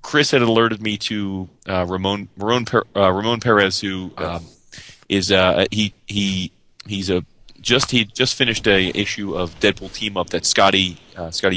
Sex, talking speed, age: male, 170 wpm, 30-49